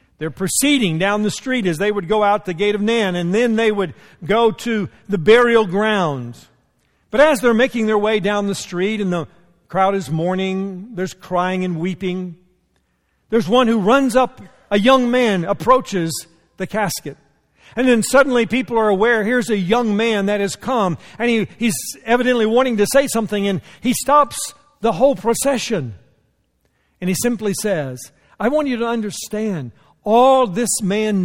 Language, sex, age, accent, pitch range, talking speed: English, male, 50-69, American, 170-235 Hz, 175 wpm